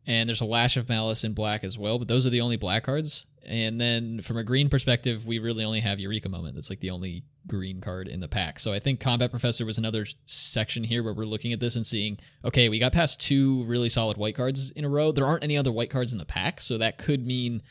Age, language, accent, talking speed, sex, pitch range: 20-39, English, American, 270 wpm, male, 105-130 Hz